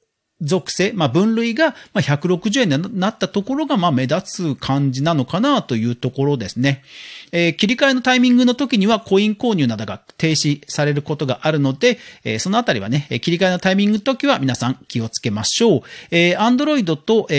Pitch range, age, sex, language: 135-220 Hz, 40-59, male, Japanese